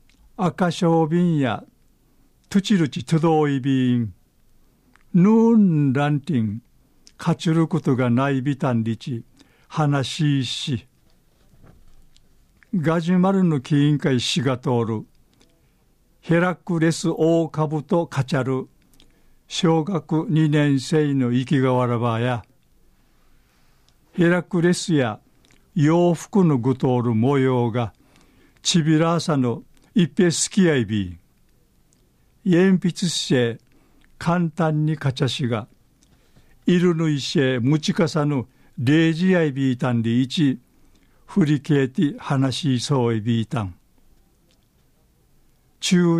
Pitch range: 130-165 Hz